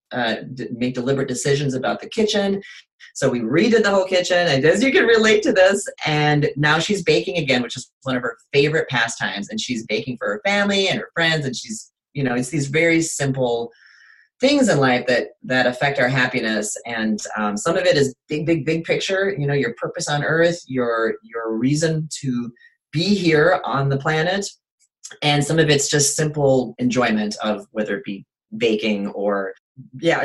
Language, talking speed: English, 190 wpm